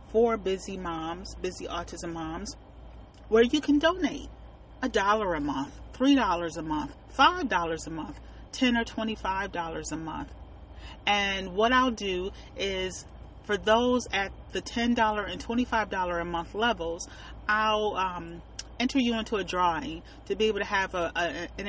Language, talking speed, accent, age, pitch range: English, 165 wpm, American, 30-49, 170-220 Hz